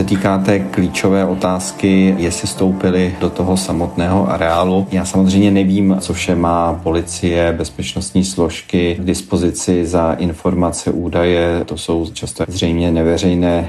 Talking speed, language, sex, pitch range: 130 wpm, Czech, male, 85-95 Hz